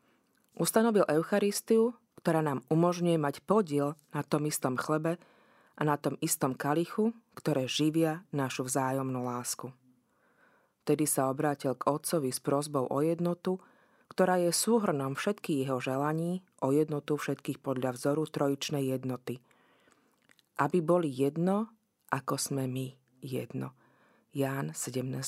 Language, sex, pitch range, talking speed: Slovak, female, 140-175 Hz, 120 wpm